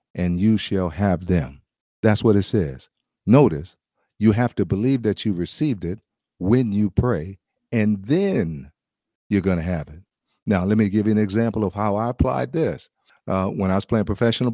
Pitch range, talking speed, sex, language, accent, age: 95-120 Hz, 190 wpm, male, English, American, 50-69